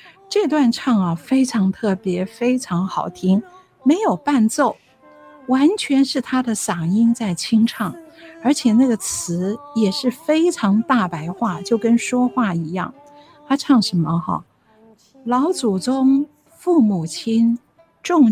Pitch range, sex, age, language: 195-280 Hz, female, 50-69, Chinese